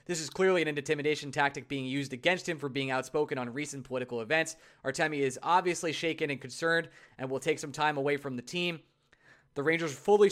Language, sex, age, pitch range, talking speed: English, male, 20-39, 140-180 Hz, 205 wpm